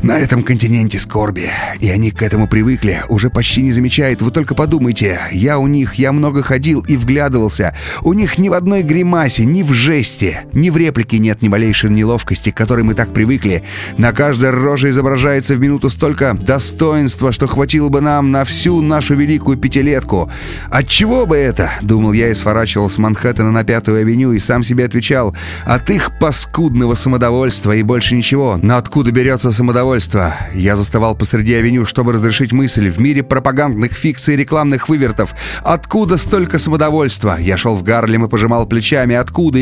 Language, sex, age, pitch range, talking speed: Russian, male, 30-49, 110-145 Hz, 175 wpm